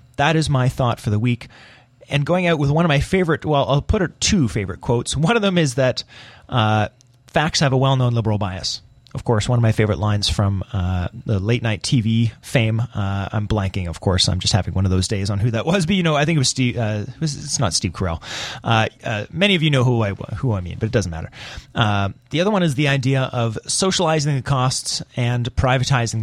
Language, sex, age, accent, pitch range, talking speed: English, male, 30-49, American, 110-145 Hz, 235 wpm